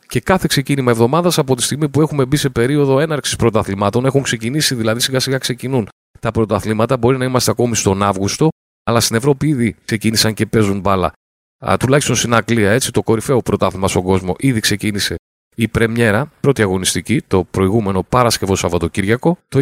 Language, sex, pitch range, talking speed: Greek, male, 105-140 Hz, 170 wpm